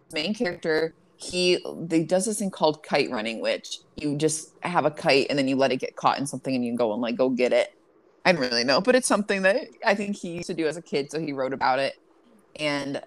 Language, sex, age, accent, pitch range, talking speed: English, female, 20-39, American, 140-200 Hz, 260 wpm